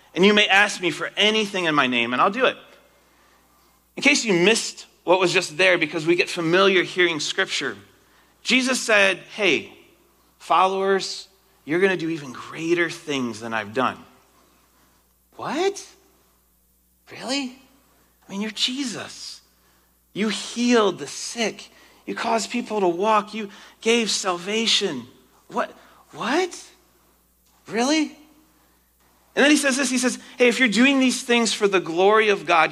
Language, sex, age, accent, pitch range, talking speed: English, male, 30-49, American, 160-225 Hz, 145 wpm